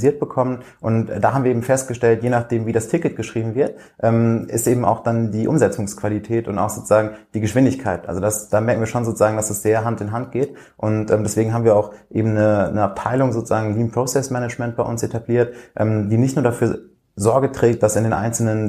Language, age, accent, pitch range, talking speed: German, 30-49, German, 110-120 Hz, 210 wpm